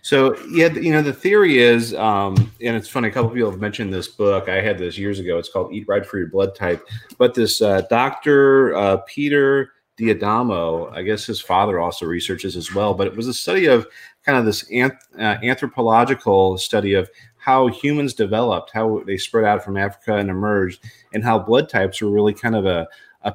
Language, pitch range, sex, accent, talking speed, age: English, 95-120 Hz, male, American, 215 wpm, 30-49